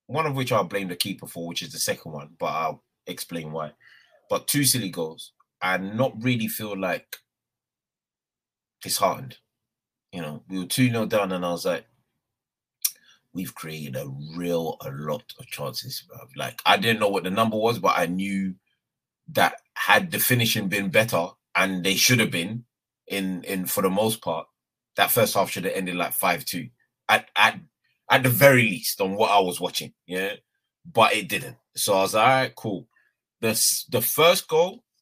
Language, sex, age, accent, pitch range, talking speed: English, male, 30-49, British, 90-115 Hz, 185 wpm